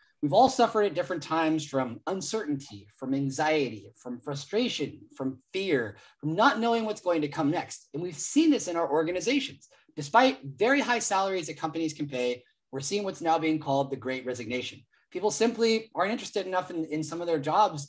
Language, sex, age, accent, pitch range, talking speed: English, male, 30-49, American, 150-215 Hz, 190 wpm